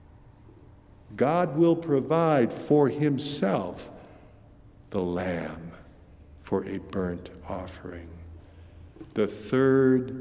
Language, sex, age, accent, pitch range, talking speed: English, male, 50-69, American, 100-155 Hz, 75 wpm